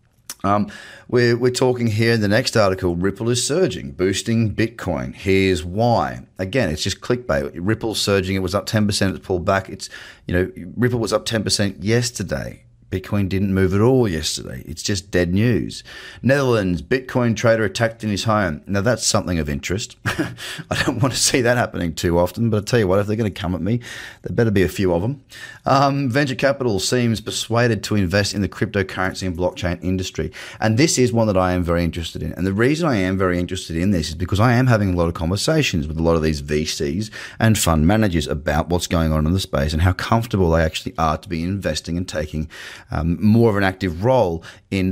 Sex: male